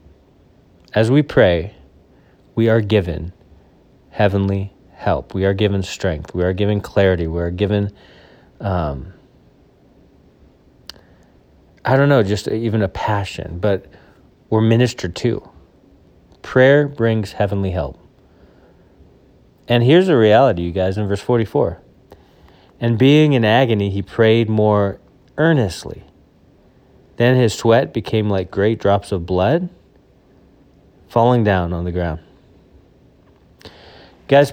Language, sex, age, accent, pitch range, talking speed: English, male, 30-49, American, 90-120 Hz, 115 wpm